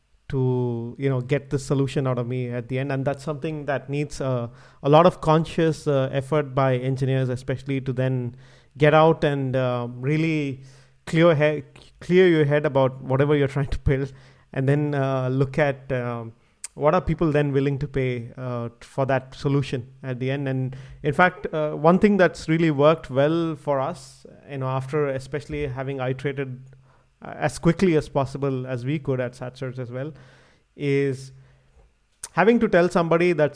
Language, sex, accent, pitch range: English, male, Indian, 130-150 Hz